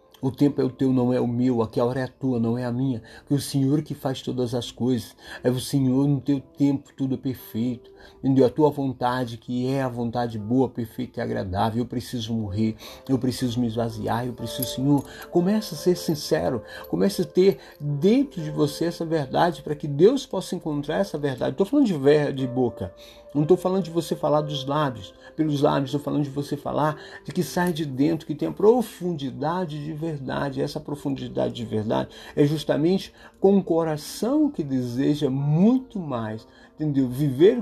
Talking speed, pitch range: 200 wpm, 120-155 Hz